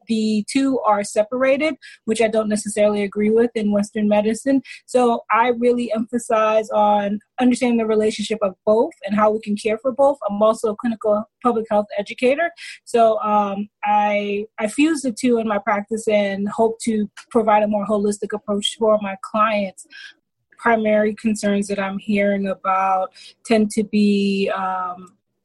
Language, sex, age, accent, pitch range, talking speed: English, female, 20-39, American, 205-235 Hz, 160 wpm